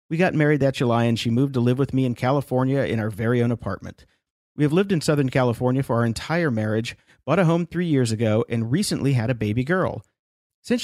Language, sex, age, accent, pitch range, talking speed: English, male, 40-59, American, 115-145 Hz, 235 wpm